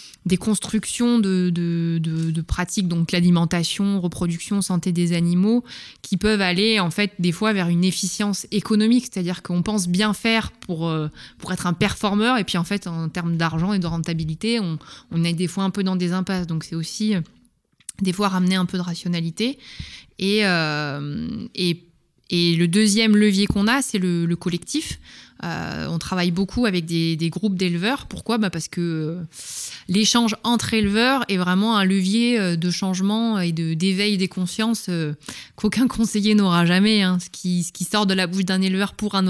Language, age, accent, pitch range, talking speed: French, 20-39, French, 170-210 Hz, 190 wpm